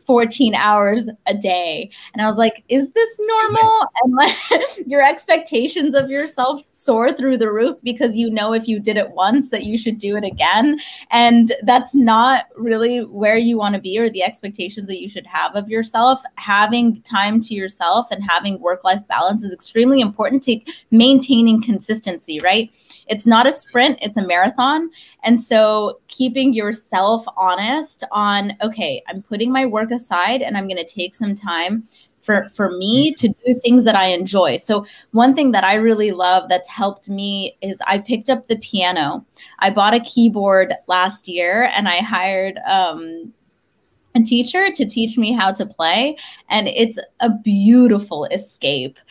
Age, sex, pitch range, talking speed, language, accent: 20-39, female, 195-250 Hz, 170 wpm, English, American